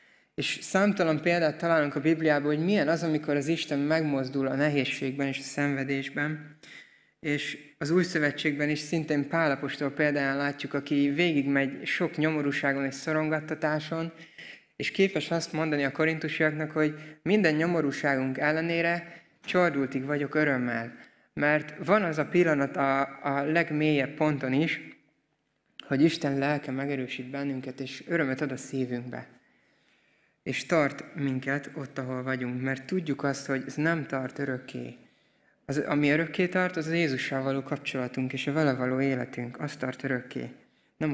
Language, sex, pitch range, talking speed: Hungarian, male, 140-160 Hz, 145 wpm